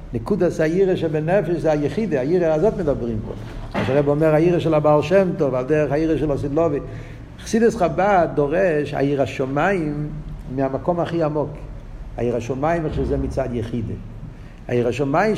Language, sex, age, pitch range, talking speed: Hebrew, male, 50-69, 130-165 Hz, 135 wpm